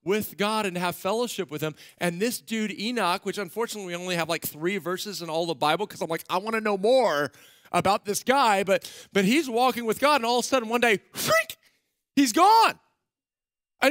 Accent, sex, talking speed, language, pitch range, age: American, male, 215 wpm, English, 155-220 Hz, 40-59